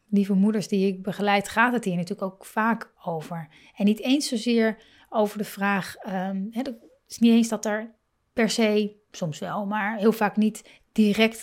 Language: Dutch